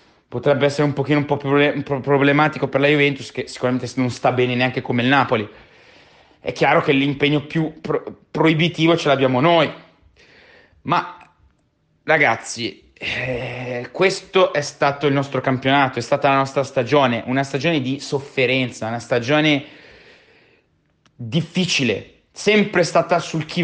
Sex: male